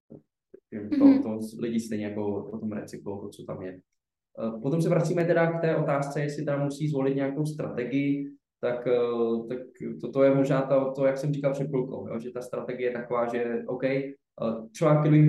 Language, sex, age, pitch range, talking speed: Slovak, male, 20-39, 115-140 Hz, 185 wpm